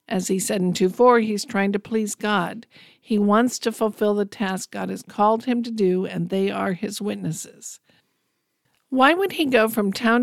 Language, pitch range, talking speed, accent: English, 195-230 Hz, 195 wpm, American